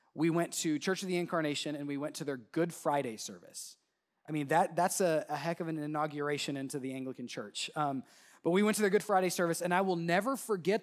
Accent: American